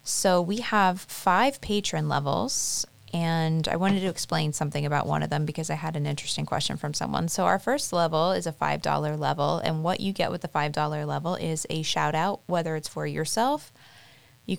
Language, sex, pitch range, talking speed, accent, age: English, female, 155-185 Hz, 200 wpm, American, 20-39